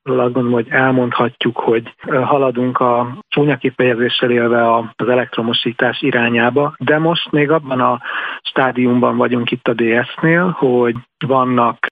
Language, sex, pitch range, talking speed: Hungarian, male, 120-145 Hz, 120 wpm